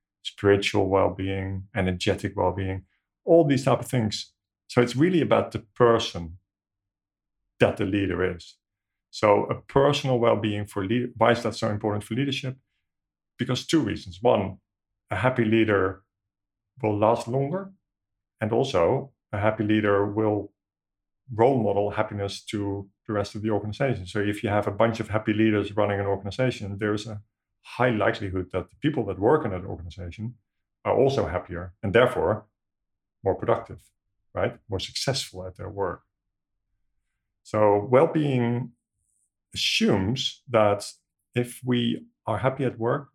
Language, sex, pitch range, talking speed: English, male, 100-115 Hz, 150 wpm